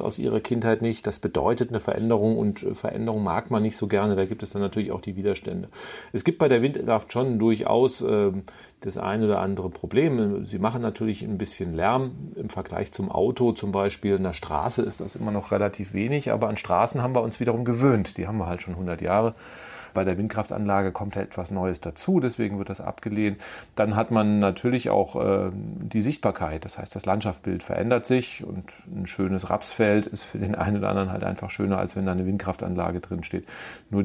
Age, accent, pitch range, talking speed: 40-59, German, 95-115 Hz, 205 wpm